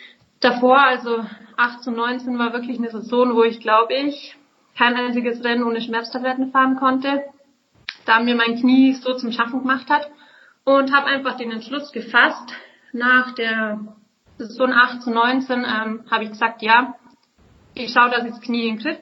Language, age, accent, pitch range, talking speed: German, 30-49, German, 225-260 Hz, 175 wpm